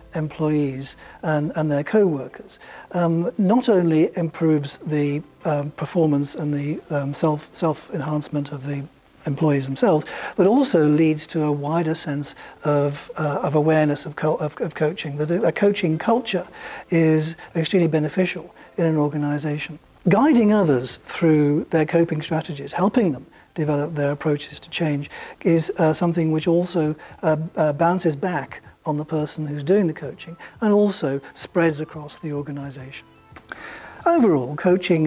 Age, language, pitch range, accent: 40-59, English, 145-170 Hz, British